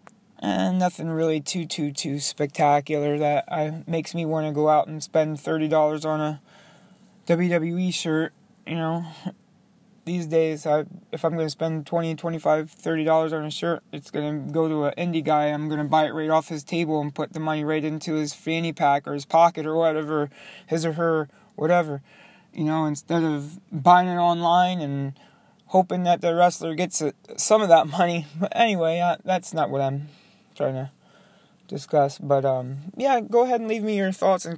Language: English